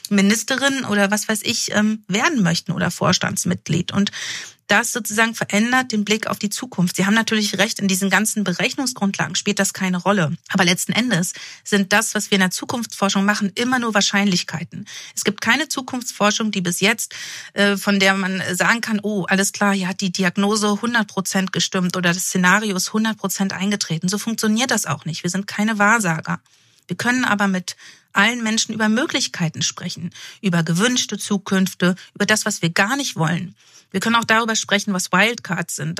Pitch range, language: 185-220 Hz, German